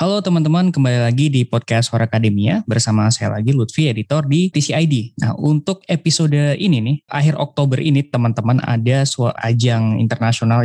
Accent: native